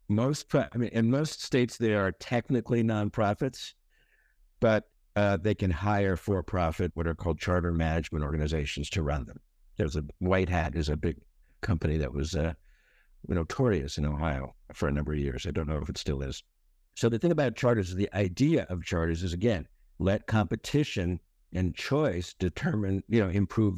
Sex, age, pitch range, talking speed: male, 60-79, 80-110 Hz, 180 wpm